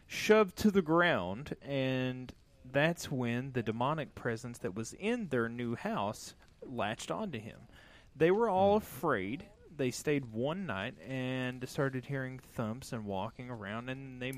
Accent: American